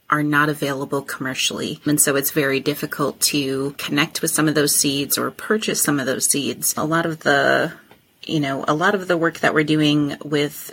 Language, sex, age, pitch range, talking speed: English, female, 30-49, 145-160 Hz, 205 wpm